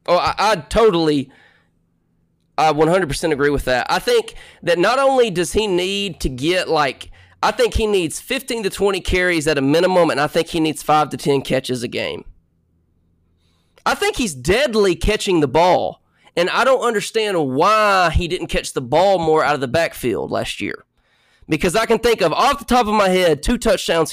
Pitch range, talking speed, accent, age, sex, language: 150-200 Hz, 195 wpm, American, 20-39, male, English